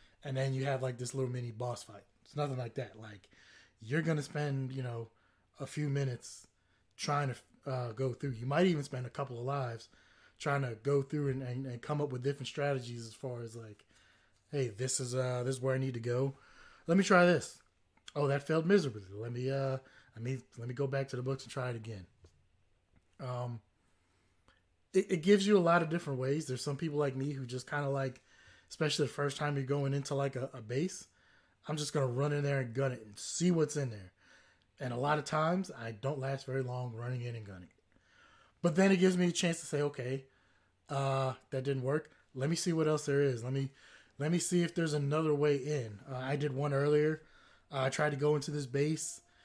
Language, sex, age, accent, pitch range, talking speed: English, male, 20-39, American, 125-150 Hz, 230 wpm